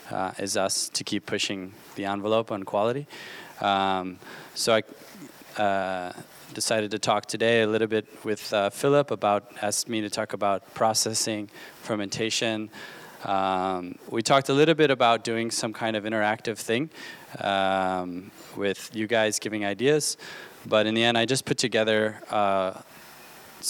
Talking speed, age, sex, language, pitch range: 150 wpm, 20-39, male, English, 105-120 Hz